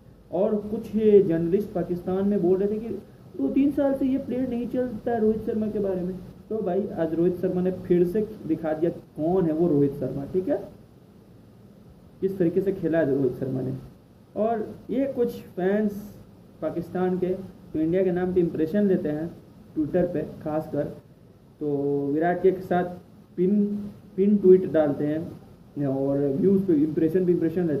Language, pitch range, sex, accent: English, 165-205 Hz, male, Indian